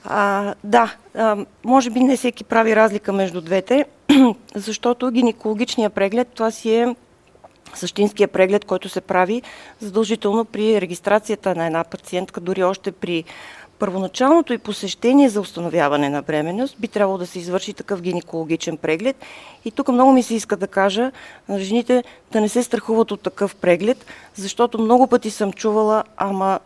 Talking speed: 150 wpm